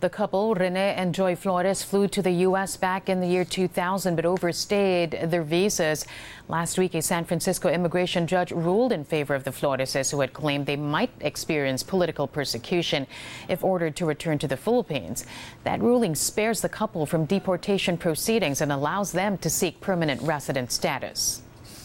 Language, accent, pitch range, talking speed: English, American, 160-195 Hz, 175 wpm